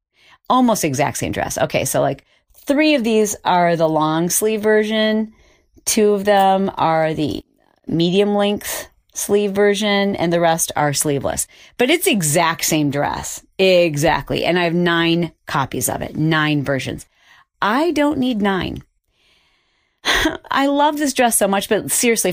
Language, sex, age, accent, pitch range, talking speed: English, female, 40-59, American, 155-215 Hz, 150 wpm